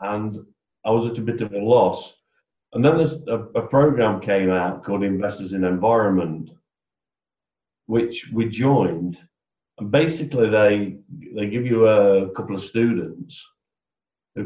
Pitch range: 90-110 Hz